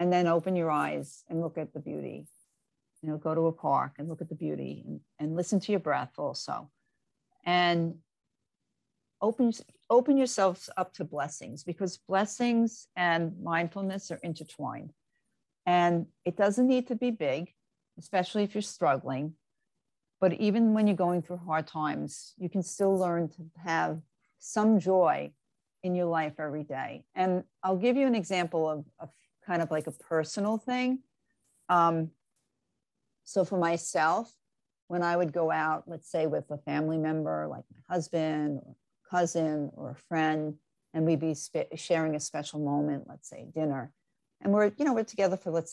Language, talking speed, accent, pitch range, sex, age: English, 170 wpm, American, 155-190 Hz, female, 50-69